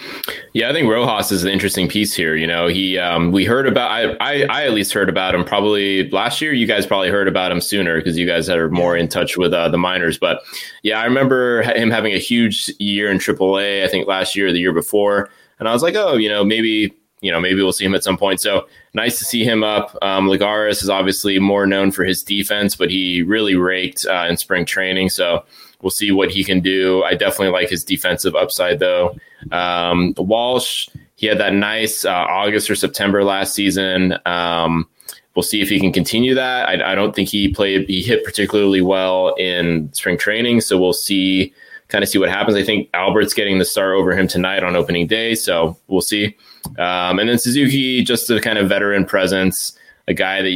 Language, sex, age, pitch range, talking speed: English, male, 20-39, 90-105 Hz, 225 wpm